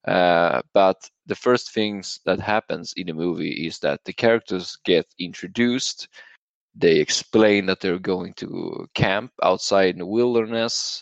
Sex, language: male, English